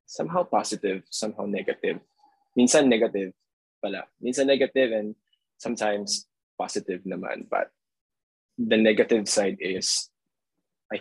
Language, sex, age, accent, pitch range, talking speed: English, male, 20-39, Filipino, 110-130 Hz, 105 wpm